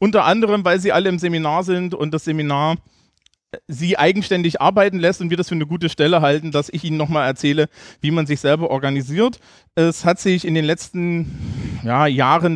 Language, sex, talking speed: German, male, 190 wpm